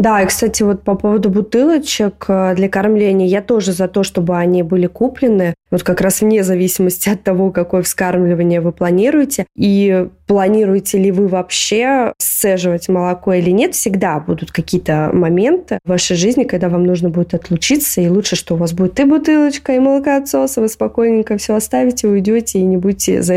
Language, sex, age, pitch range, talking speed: Russian, female, 20-39, 185-225 Hz, 175 wpm